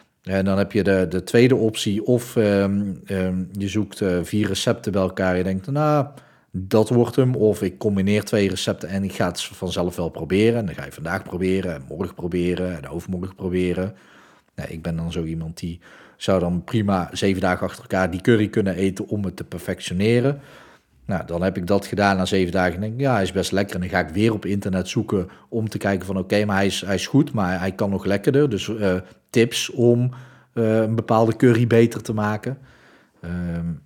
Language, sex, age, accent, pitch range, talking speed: Dutch, male, 40-59, Dutch, 90-115 Hz, 215 wpm